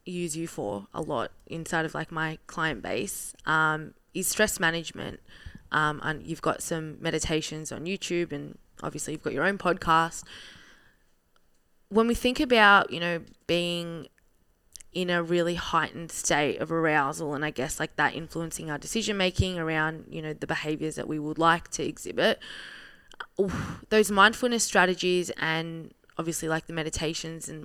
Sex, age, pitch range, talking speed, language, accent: female, 20-39, 155-175 Hz, 160 wpm, English, Australian